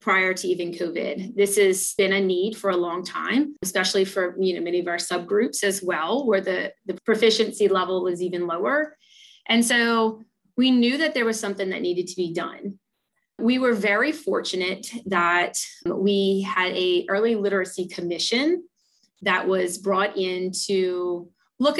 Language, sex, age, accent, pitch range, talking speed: English, female, 30-49, American, 185-230 Hz, 160 wpm